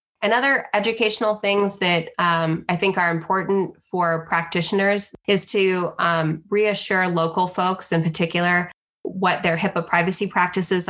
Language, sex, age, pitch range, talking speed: English, female, 20-39, 165-195 Hz, 140 wpm